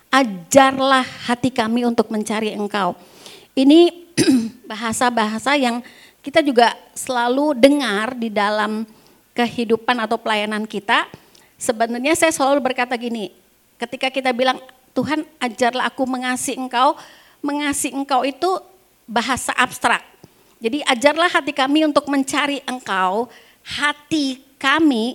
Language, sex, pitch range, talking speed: Indonesian, female, 235-290 Hz, 110 wpm